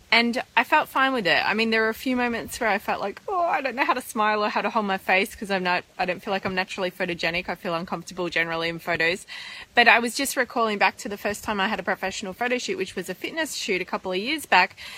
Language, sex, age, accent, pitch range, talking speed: English, female, 20-39, Australian, 195-235 Hz, 290 wpm